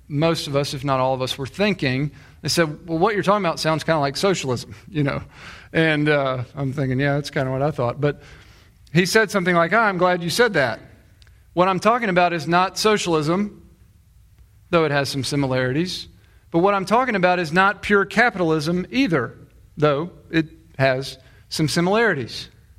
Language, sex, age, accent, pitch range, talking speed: English, male, 40-59, American, 125-180 Hz, 190 wpm